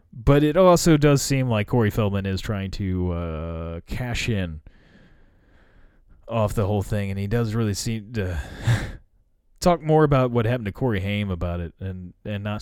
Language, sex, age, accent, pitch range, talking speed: English, male, 30-49, American, 90-120 Hz, 175 wpm